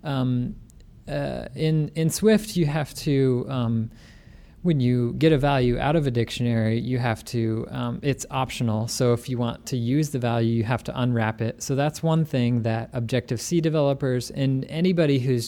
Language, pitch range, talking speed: English, 120-140 Hz, 185 wpm